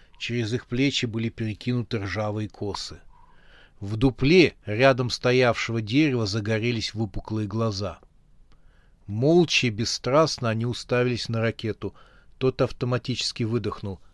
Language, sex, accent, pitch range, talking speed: Russian, male, native, 105-130 Hz, 105 wpm